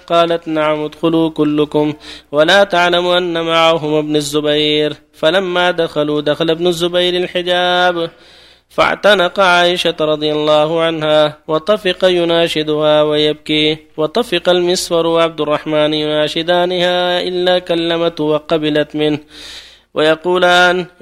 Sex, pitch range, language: male, 150-180 Hz, Arabic